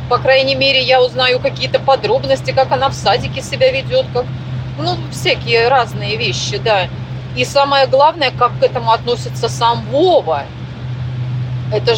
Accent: native